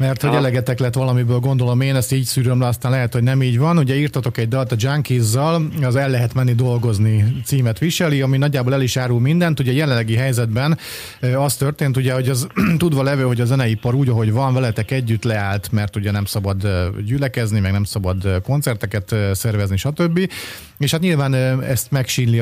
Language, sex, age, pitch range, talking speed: Hungarian, male, 30-49, 115-140 Hz, 190 wpm